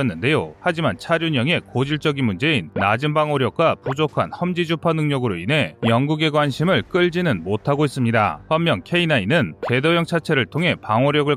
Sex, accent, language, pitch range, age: male, native, Korean, 120-160 Hz, 30-49